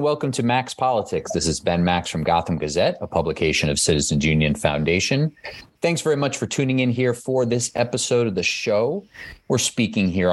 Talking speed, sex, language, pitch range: 190 wpm, male, English, 90-130 Hz